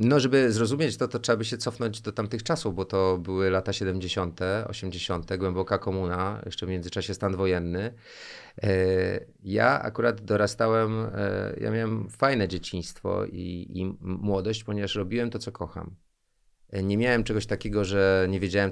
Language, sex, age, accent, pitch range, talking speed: Polish, male, 30-49, native, 90-110 Hz, 150 wpm